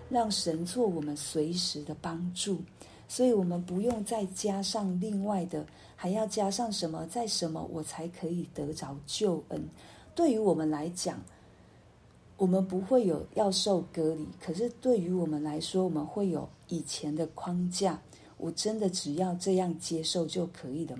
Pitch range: 155-195 Hz